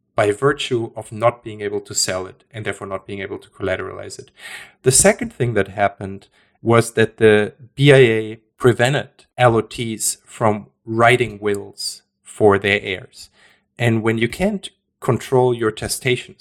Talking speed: 150 wpm